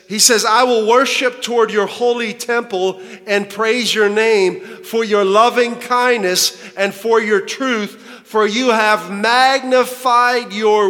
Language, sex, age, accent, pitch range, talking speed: English, male, 50-69, American, 195-245 Hz, 145 wpm